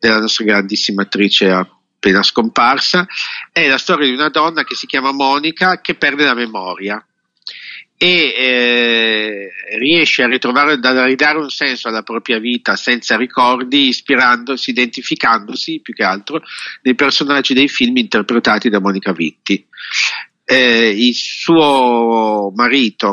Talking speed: 130 wpm